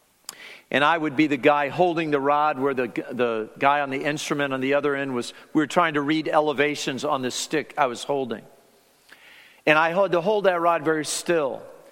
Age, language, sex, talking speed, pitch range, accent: 50-69, English, male, 210 wpm, 150-195 Hz, American